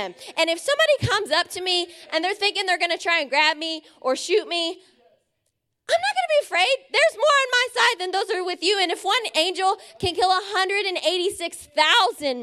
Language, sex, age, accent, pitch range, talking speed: English, female, 20-39, American, 275-360 Hz, 210 wpm